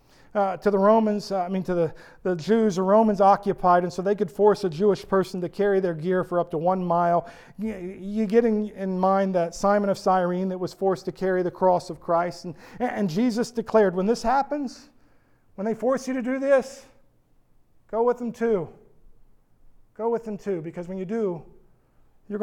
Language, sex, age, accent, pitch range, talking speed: English, male, 40-59, American, 170-210 Hz, 205 wpm